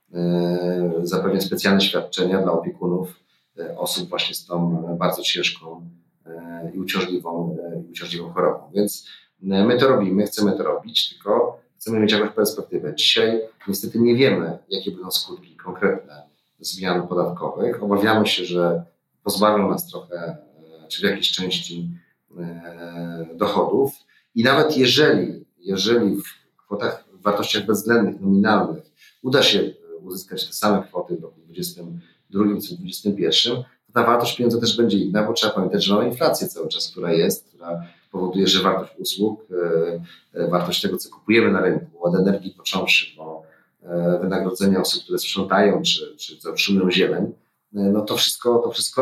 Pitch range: 85-105 Hz